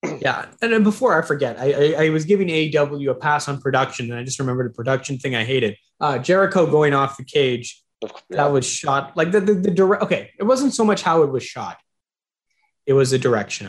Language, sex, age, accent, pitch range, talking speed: English, male, 20-39, American, 140-190 Hz, 225 wpm